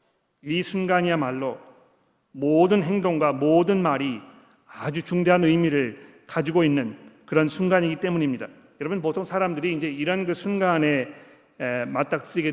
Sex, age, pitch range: male, 40-59, 145-180 Hz